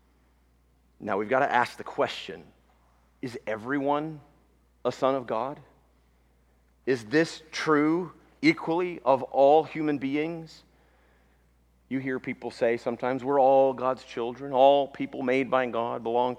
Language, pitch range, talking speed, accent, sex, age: English, 95-150 Hz, 130 wpm, American, male, 40-59